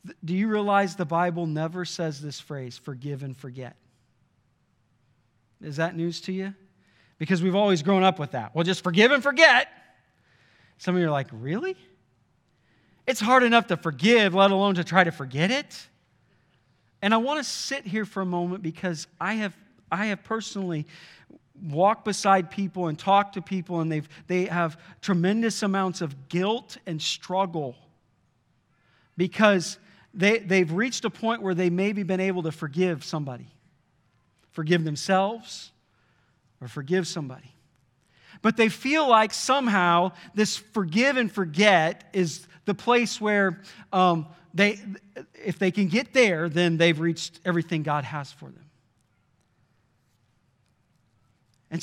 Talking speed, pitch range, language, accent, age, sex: 145 wpm, 150-205 Hz, English, American, 40-59, male